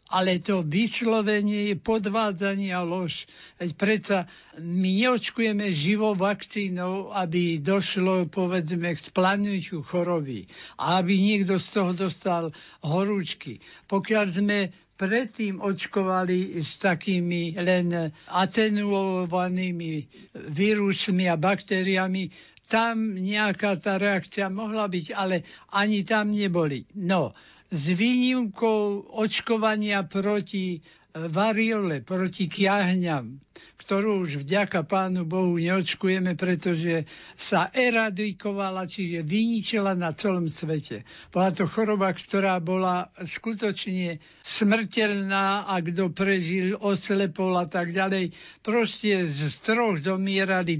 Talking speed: 100 wpm